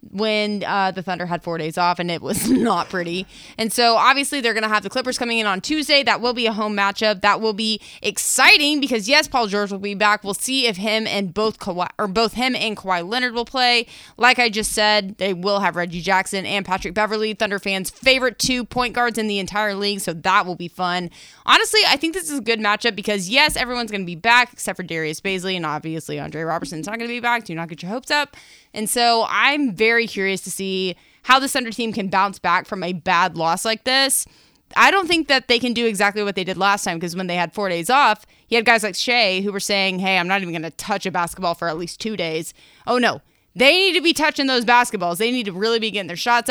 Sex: female